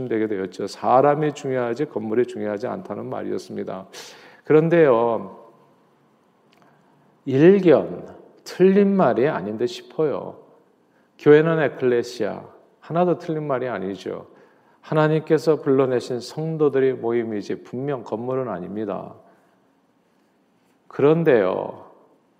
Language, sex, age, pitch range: Korean, male, 40-59, 115-155 Hz